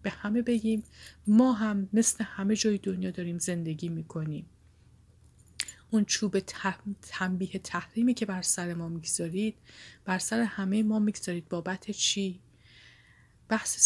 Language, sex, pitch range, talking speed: Persian, female, 165-200 Hz, 130 wpm